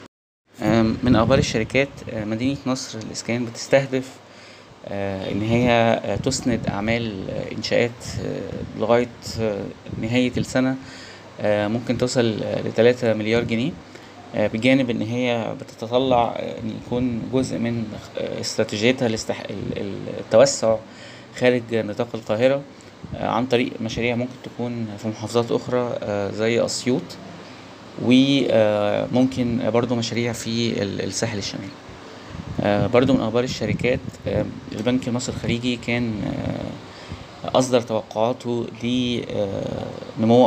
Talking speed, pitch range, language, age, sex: 90 wpm, 110-125 Hz, Arabic, 20-39, male